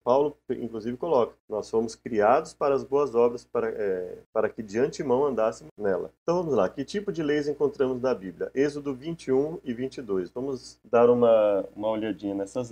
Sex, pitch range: male, 115-150 Hz